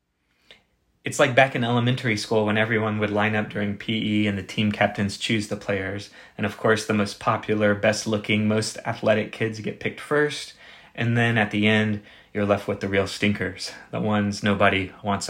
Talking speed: 190 wpm